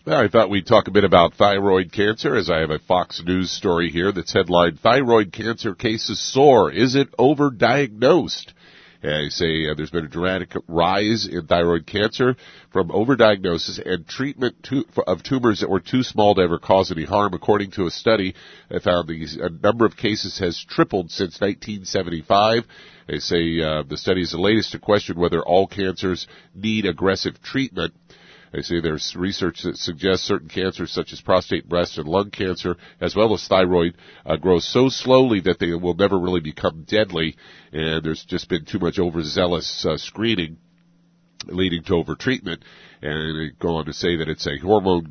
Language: English